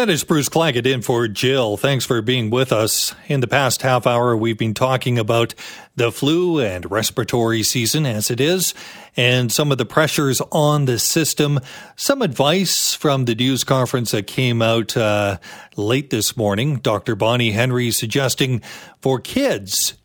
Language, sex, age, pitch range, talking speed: English, male, 40-59, 115-150 Hz, 170 wpm